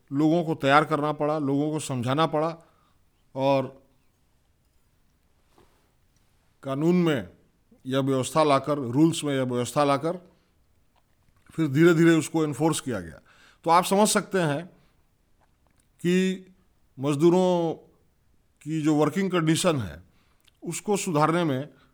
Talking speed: 110 wpm